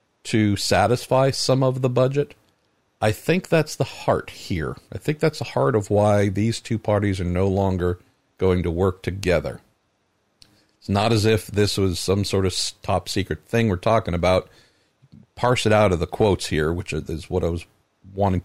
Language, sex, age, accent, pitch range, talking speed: English, male, 50-69, American, 100-115 Hz, 185 wpm